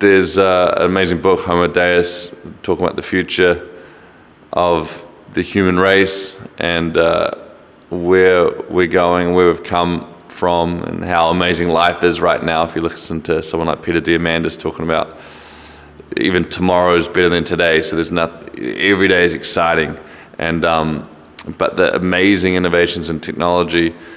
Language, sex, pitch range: English, male, 85-90 Hz